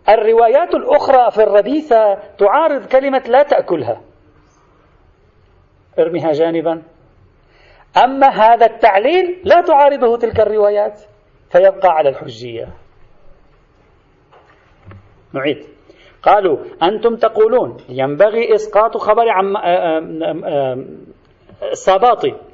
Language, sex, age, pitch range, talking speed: Arabic, male, 40-59, 195-275 Hz, 75 wpm